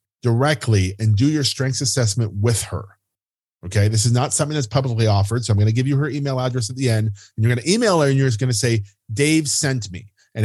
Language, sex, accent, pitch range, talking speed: English, male, American, 105-135 Hz, 255 wpm